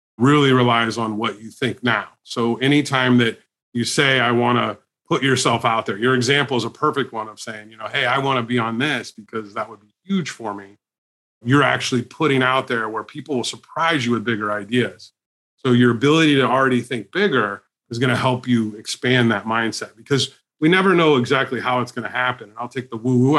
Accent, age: American, 30-49